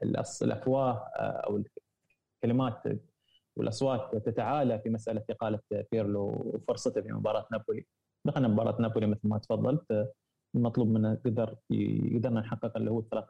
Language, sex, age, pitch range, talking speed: Arabic, male, 20-39, 110-120 Hz, 125 wpm